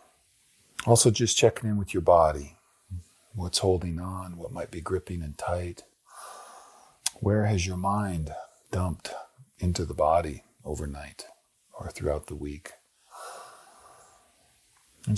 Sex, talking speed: male, 120 wpm